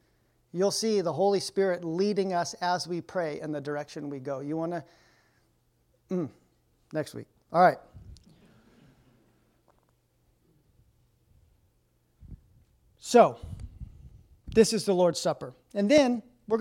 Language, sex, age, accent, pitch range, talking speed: English, male, 40-59, American, 155-205 Hz, 110 wpm